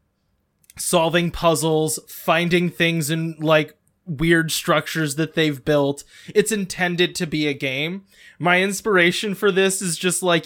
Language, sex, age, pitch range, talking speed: English, male, 20-39, 150-180 Hz, 140 wpm